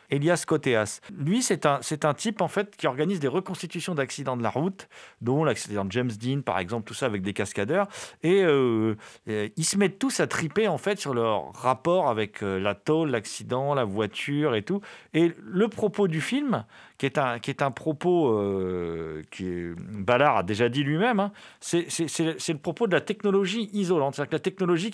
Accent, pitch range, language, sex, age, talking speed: French, 115-180 Hz, French, male, 40-59, 185 wpm